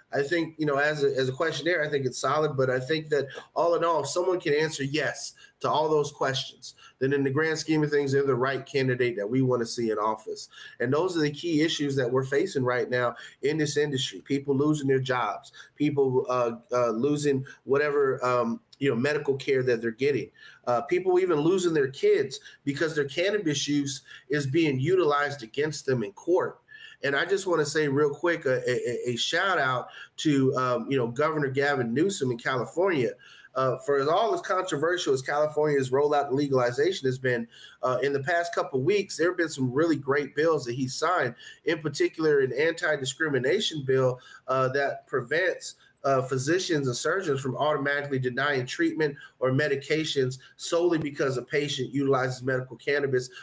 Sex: male